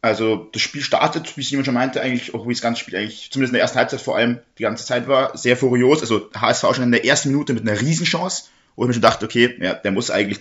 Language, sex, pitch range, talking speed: German, male, 115-145 Hz, 285 wpm